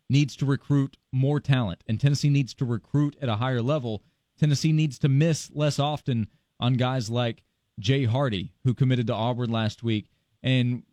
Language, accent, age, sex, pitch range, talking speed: English, American, 30-49, male, 125-155 Hz, 175 wpm